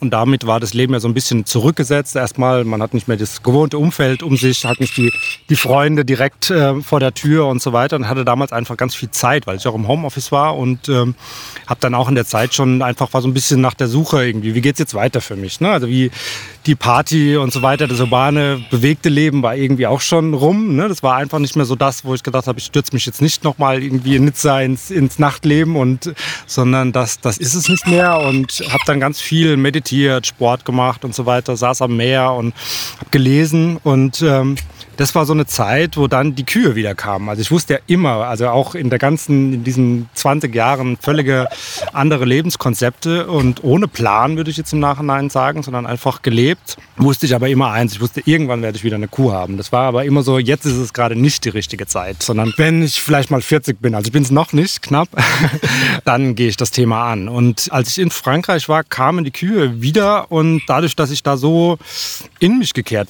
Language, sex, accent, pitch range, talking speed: German, male, German, 125-150 Hz, 235 wpm